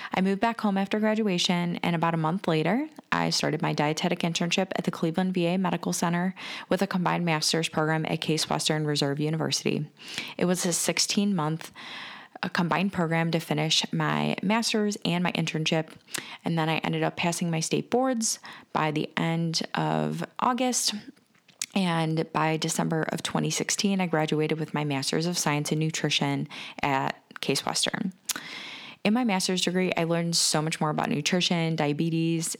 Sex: female